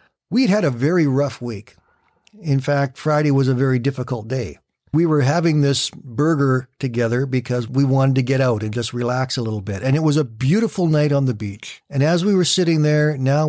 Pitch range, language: 120-150 Hz, English